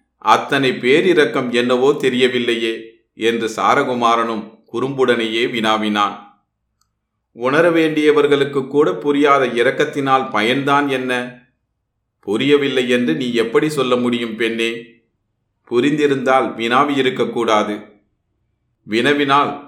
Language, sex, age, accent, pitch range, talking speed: Tamil, male, 30-49, native, 115-135 Hz, 80 wpm